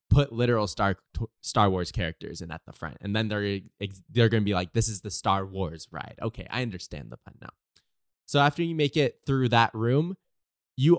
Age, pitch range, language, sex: 20-39, 95-120 Hz, English, male